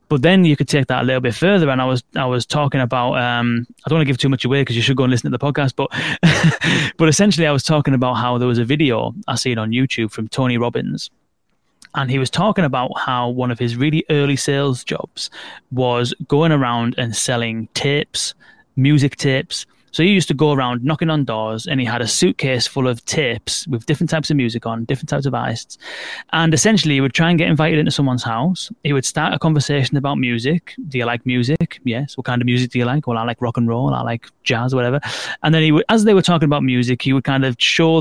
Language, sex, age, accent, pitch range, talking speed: English, male, 20-39, British, 125-150 Hz, 250 wpm